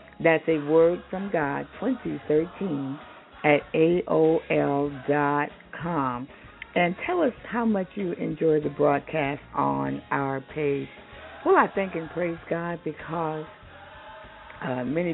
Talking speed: 115 wpm